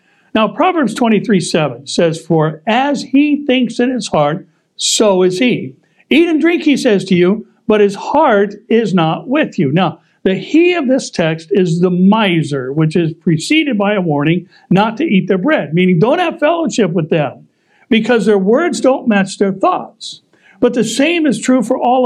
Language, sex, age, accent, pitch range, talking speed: English, male, 60-79, American, 170-235 Hz, 190 wpm